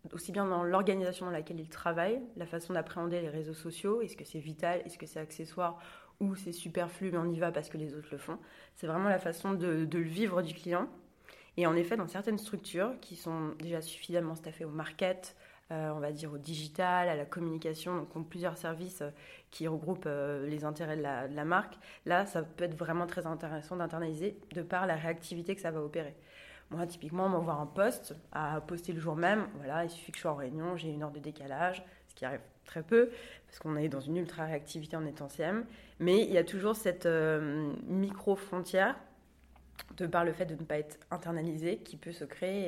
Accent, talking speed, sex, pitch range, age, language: French, 220 wpm, female, 155-180 Hz, 20-39, French